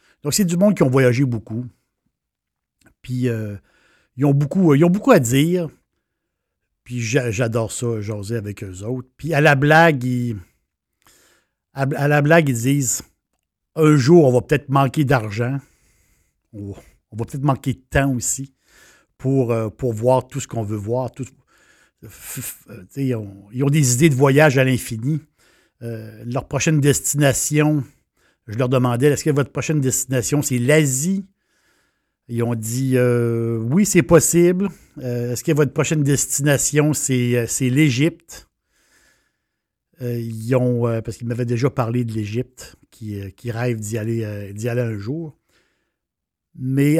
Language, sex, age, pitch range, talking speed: French, male, 60-79, 120-145 Hz, 155 wpm